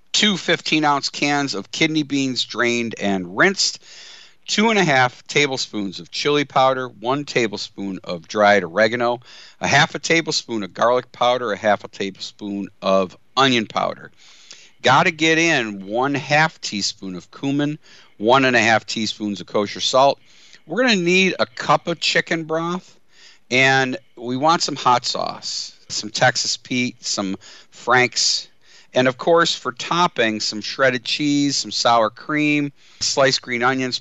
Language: English